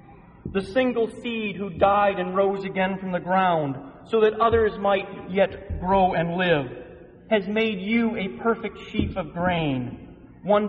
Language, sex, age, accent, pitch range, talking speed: English, male, 40-59, American, 160-210 Hz, 155 wpm